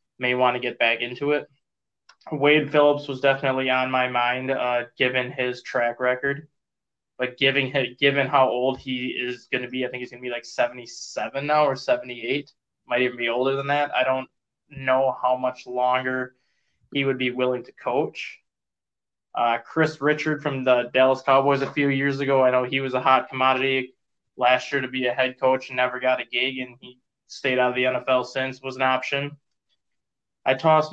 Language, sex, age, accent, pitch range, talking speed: English, male, 20-39, American, 125-140 Hz, 195 wpm